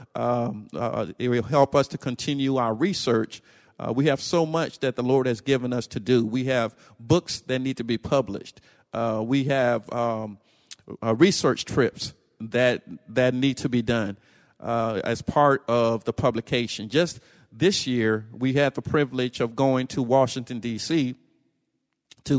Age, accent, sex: 50-69, American, male